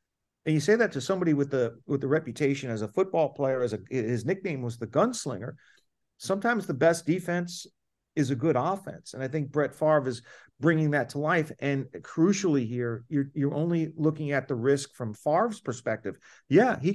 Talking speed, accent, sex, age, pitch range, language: 195 wpm, American, male, 50-69, 145-200 Hz, English